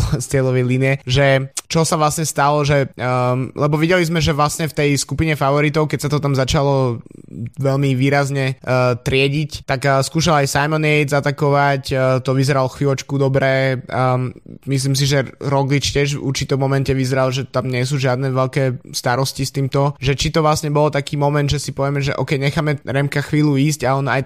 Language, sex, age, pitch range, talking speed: Slovak, male, 20-39, 130-150 Hz, 190 wpm